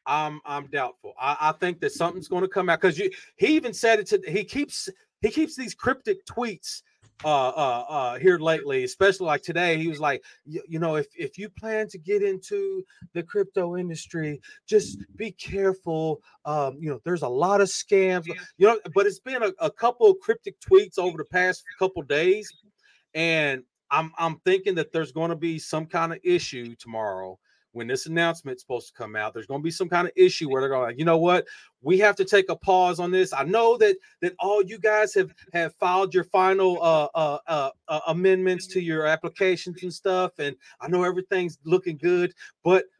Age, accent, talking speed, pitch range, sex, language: 30-49, American, 205 wpm, 155-215 Hz, male, English